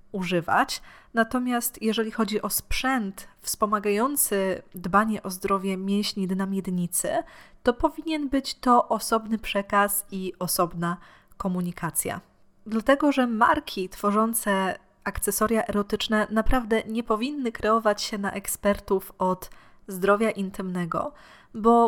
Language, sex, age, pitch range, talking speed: Polish, female, 20-39, 190-230 Hz, 105 wpm